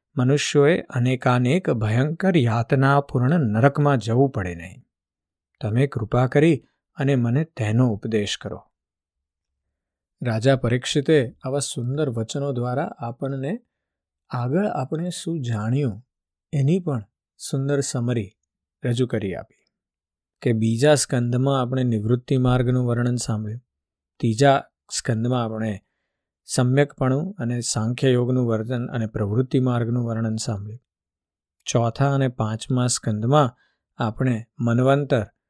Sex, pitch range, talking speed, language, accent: male, 110-135 Hz, 95 wpm, Gujarati, native